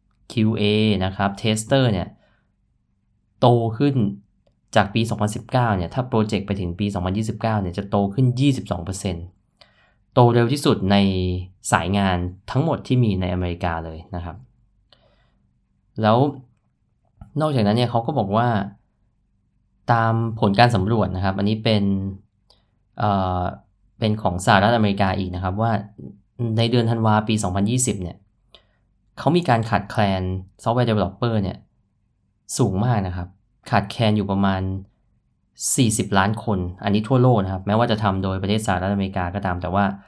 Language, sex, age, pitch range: Thai, male, 20-39, 95-115 Hz